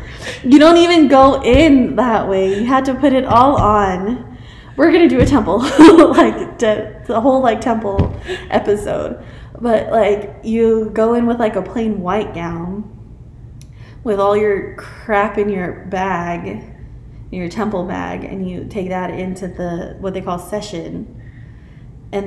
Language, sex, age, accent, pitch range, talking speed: English, female, 20-39, American, 190-265 Hz, 155 wpm